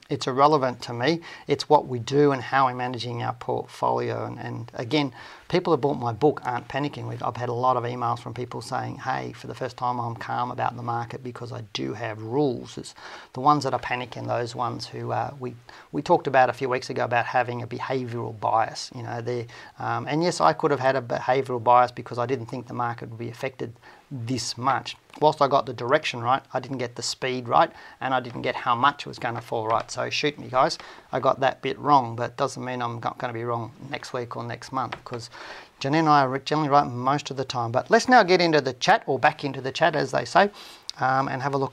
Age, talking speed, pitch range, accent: 40-59, 245 wpm, 120-145 Hz, Australian